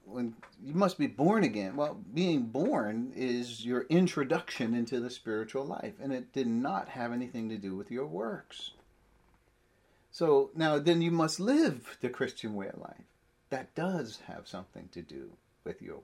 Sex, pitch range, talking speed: male, 120-180 Hz, 170 wpm